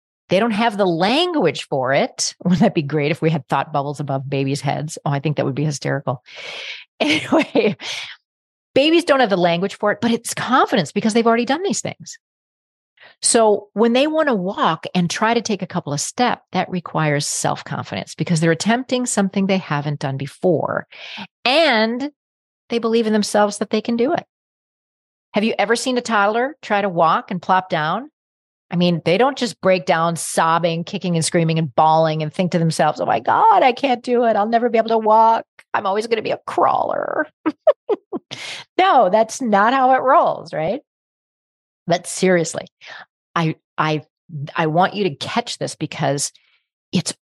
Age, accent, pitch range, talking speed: 40-59, American, 160-240 Hz, 185 wpm